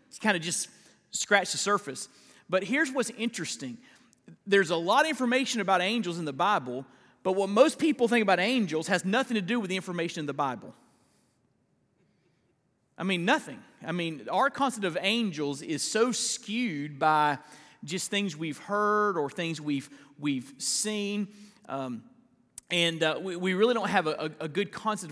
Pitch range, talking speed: 155-230 Hz, 175 wpm